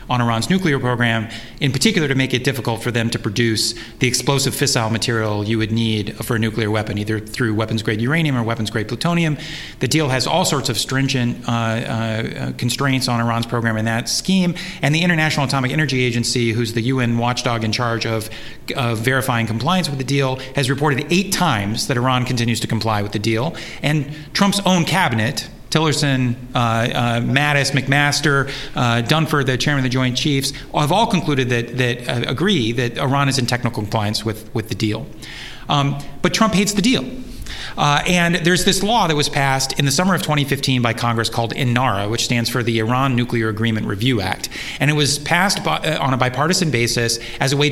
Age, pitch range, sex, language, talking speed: 40-59, 115-150 Hz, male, English, 195 wpm